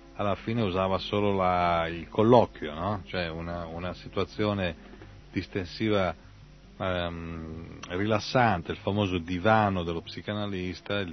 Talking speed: 100 wpm